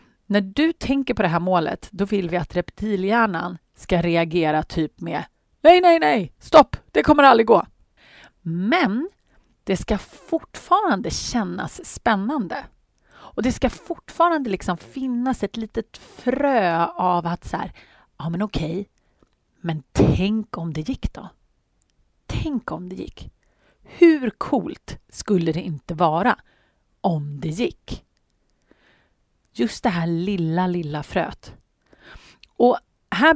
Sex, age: female, 30-49